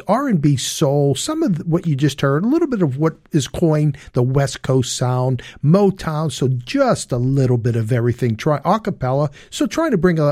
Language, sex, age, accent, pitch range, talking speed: English, male, 50-69, American, 130-175 Hz, 205 wpm